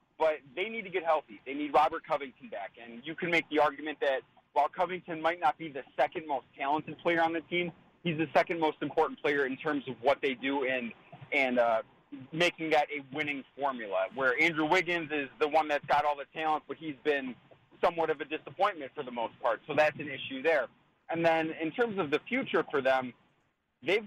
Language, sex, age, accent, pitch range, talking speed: English, male, 30-49, American, 140-165 Hz, 220 wpm